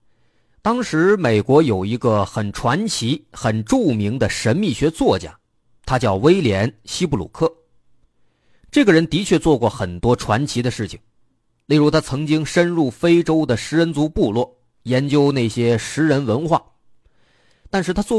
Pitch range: 110-155 Hz